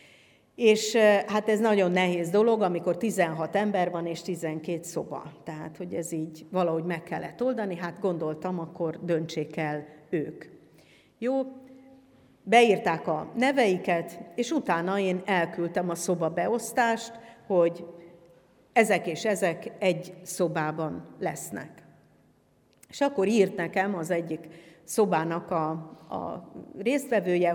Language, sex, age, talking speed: Hungarian, female, 50-69, 120 wpm